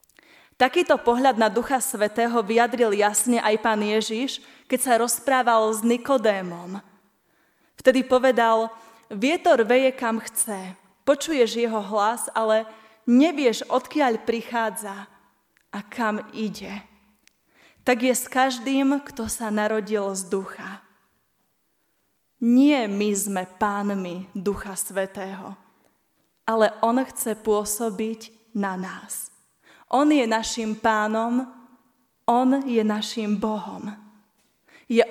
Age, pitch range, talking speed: 20-39, 210-255 Hz, 105 wpm